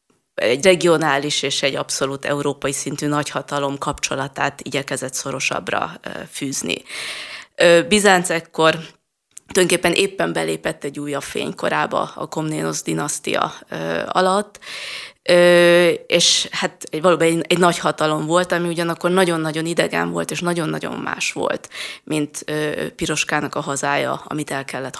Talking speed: 115 wpm